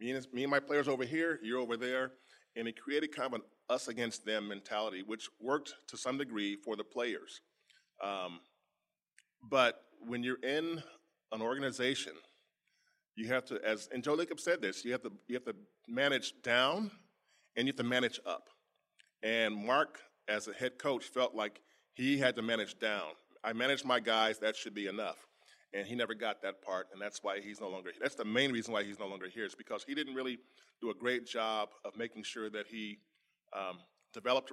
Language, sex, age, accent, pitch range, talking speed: English, male, 30-49, American, 110-130 Hz, 195 wpm